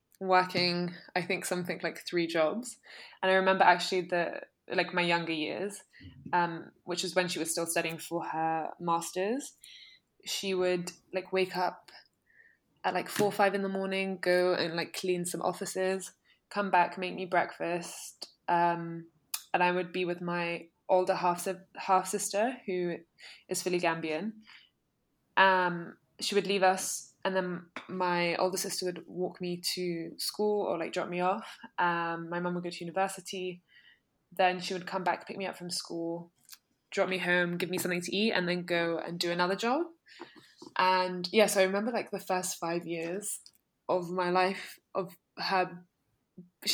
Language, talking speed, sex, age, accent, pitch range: English, 170 wpm, female, 20-39, British, 175-190 Hz